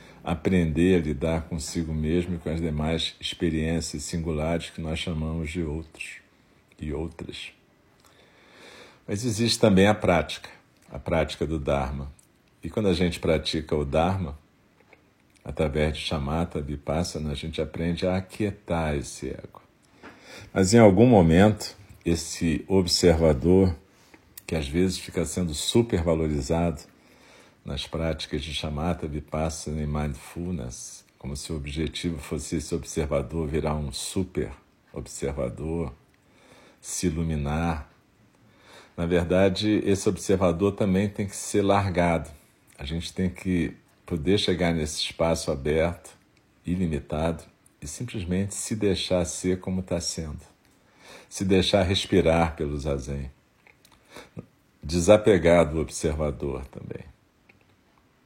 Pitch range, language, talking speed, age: 80-90 Hz, Portuguese, 115 wpm, 50-69